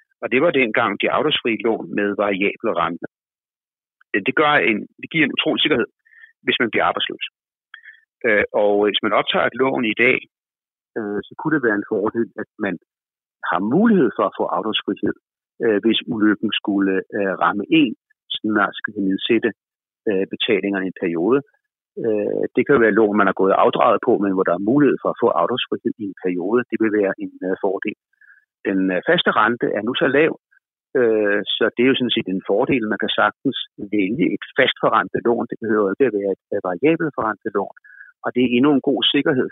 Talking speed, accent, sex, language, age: 180 wpm, native, male, Danish, 60-79